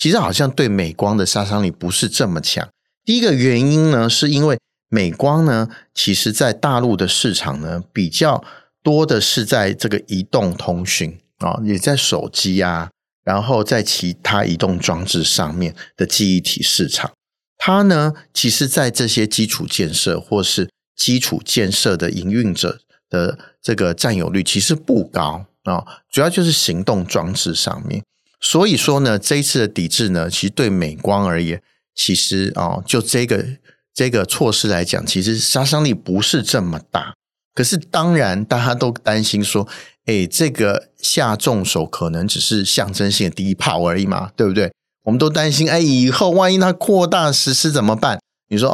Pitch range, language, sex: 95-135 Hz, Chinese, male